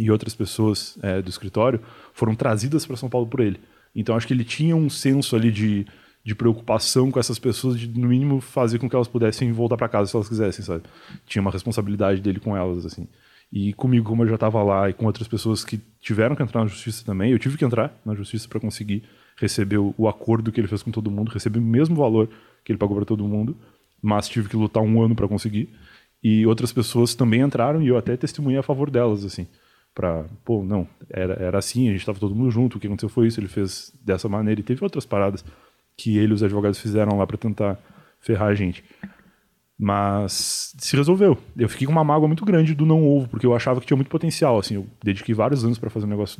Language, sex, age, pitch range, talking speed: Portuguese, male, 20-39, 105-125 Hz, 230 wpm